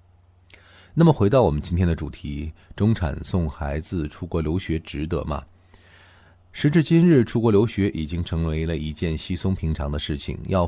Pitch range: 80-105 Hz